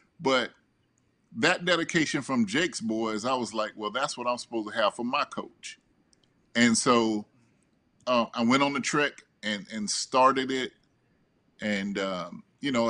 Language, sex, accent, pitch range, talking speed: English, male, American, 110-145 Hz, 165 wpm